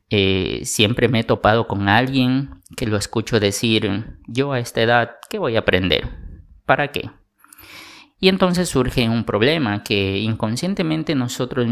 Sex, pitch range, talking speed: male, 105-130 Hz, 150 wpm